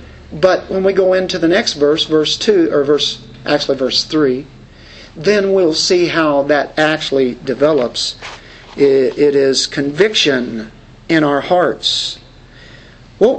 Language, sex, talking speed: English, male, 130 wpm